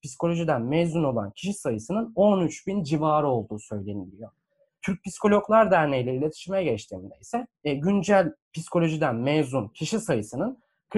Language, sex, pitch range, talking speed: Turkish, male, 120-180 Hz, 115 wpm